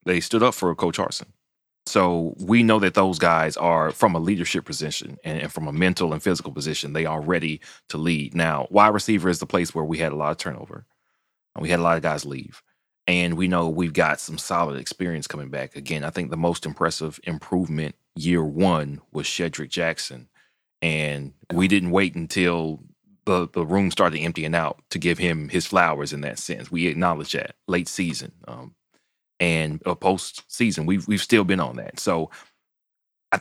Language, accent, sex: English, American, male